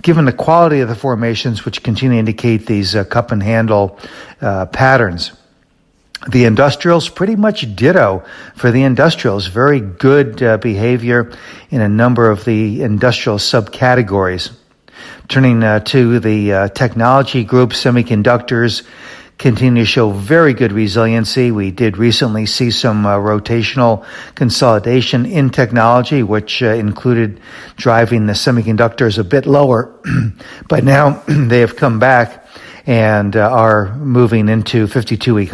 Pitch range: 110-130 Hz